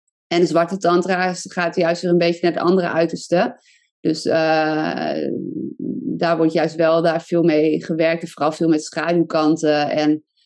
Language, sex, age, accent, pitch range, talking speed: Dutch, female, 20-39, Dutch, 155-175 Hz, 165 wpm